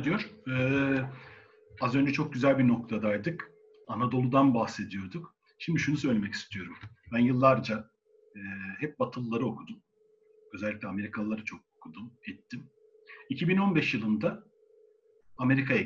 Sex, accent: male, native